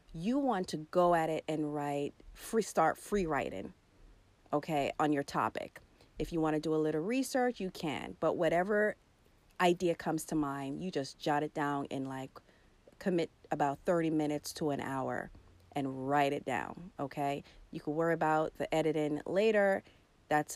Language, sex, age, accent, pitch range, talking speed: English, female, 30-49, American, 140-180 Hz, 170 wpm